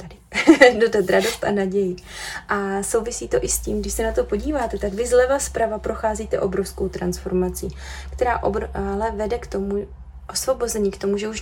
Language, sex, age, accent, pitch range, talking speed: Czech, female, 20-39, native, 190-225 Hz, 180 wpm